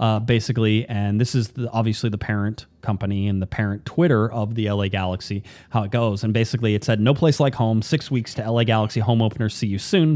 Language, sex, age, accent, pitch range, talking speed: English, male, 30-49, American, 105-125 Hz, 230 wpm